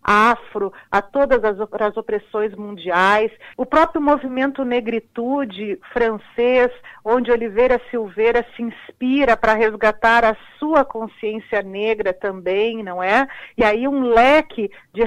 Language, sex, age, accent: Portuguese, female, 50-69, Brazilian